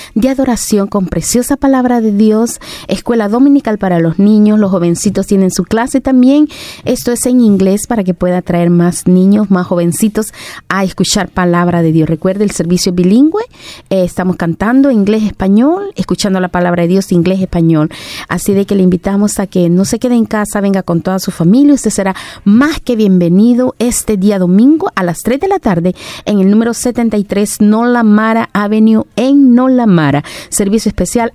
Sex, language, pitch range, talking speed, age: female, Spanish, 185-235 Hz, 185 wpm, 40-59